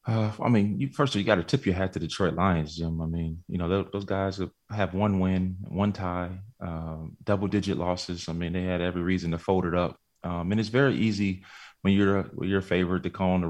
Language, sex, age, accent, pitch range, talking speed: English, male, 20-39, American, 85-95 Hz, 255 wpm